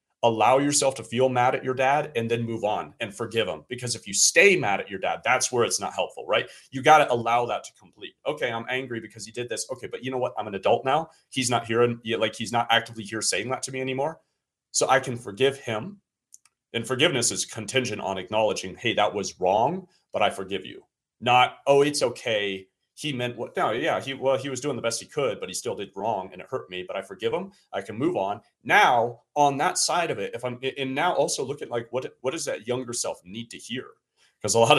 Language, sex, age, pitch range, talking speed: English, male, 30-49, 105-130 Hz, 250 wpm